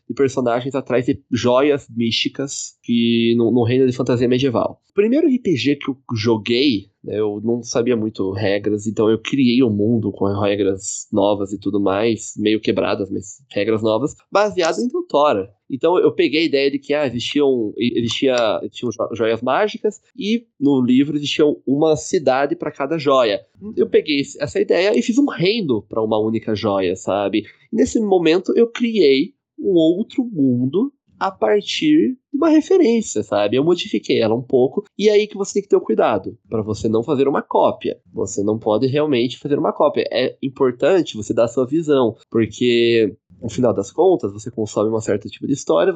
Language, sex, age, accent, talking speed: Portuguese, male, 20-39, Brazilian, 185 wpm